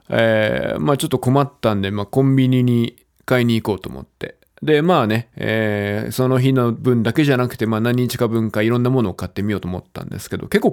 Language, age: Japanese, 20-39